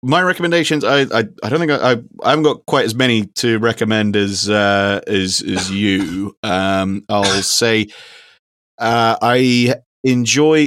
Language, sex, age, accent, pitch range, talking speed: English, male, 30-49, British, 95-110 Hz, 155 wpm